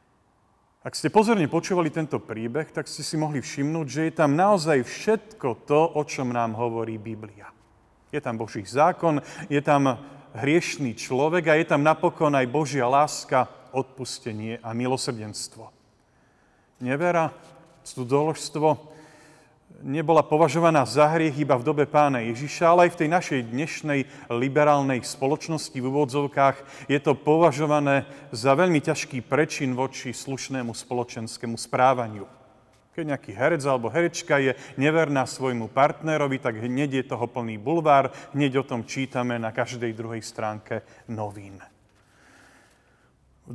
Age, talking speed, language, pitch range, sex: 40-59, 135 wpm, Slovak, 125-155 Hz, male